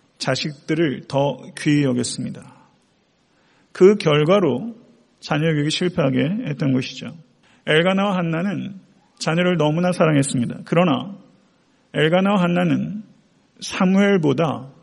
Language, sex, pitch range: Korean, male, 140-180 Hz